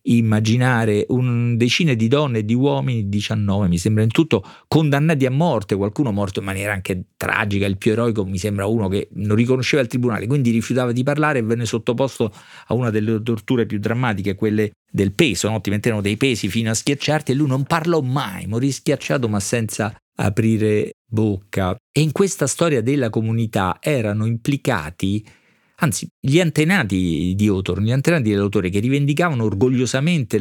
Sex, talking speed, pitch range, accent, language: male, 170 wpm, 95-125 Hz, native, Italian